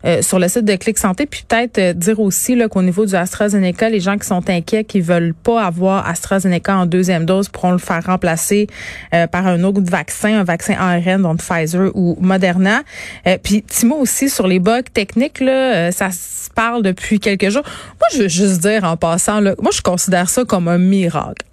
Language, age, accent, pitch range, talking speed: French, 30-49, Canadian, 190-240 Hz, 215 wpm